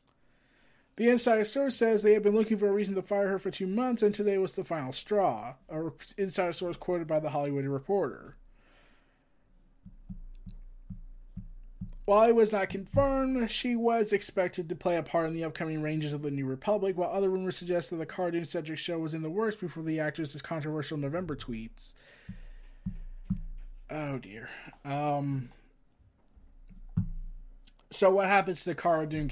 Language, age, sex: English, 20-39, male